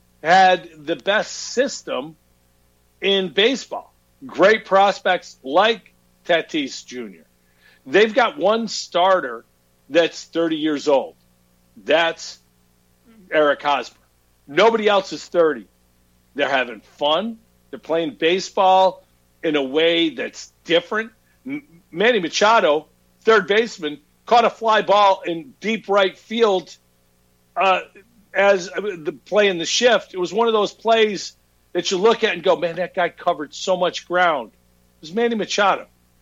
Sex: male